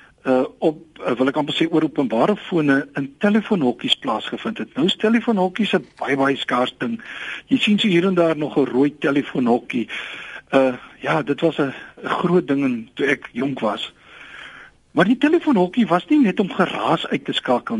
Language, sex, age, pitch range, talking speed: Finnish, male, 60-79, 145-220 Hz, 180 wpm